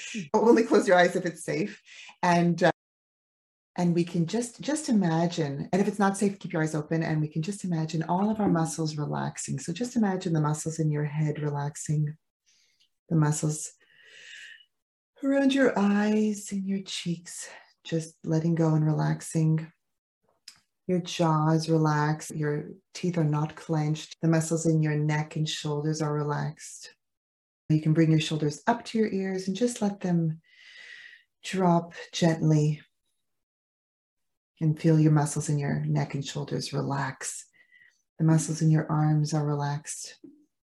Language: English